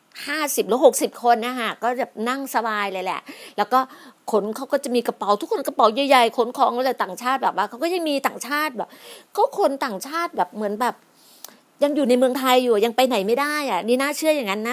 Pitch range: 215-275 Hz